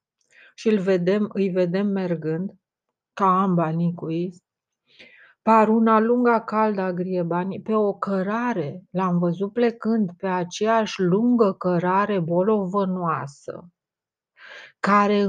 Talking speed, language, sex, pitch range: 100 wpm, Romanian, female, 180-225 Hz